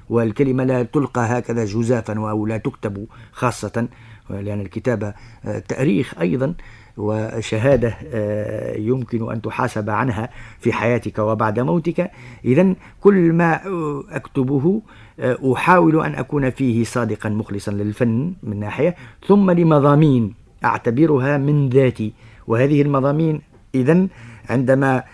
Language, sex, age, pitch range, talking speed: Arabic, male, 50-69, 115-160 Hz, 105 wpm